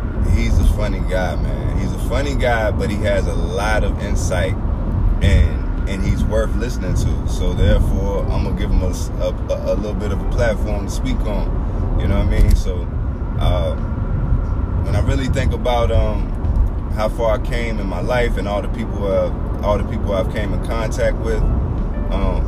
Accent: American